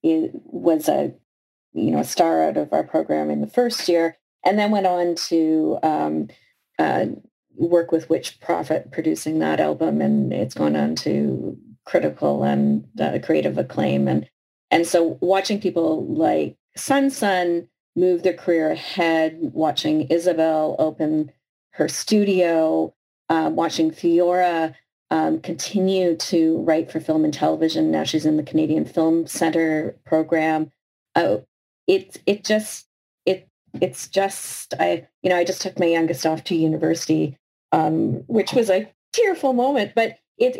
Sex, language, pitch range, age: female, English, 155-190 Hz, 40-59